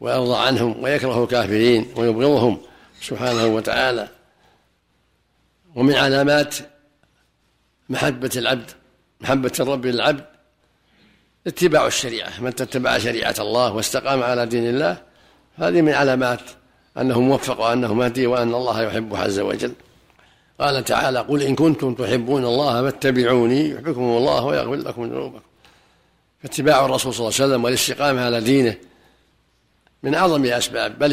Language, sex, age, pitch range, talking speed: Arabic, male, 60-79, 115-130 Hz, 120 wpm